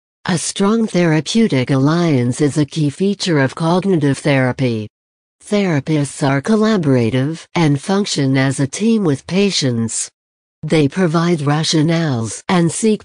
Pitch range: 135-175 Hz